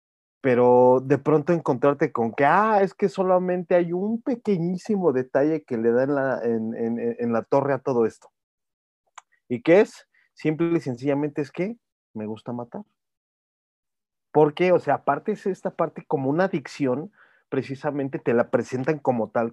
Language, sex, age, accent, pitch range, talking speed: Spanish, male, 30-49, Mexican, 115-150 Hz, 170 wpm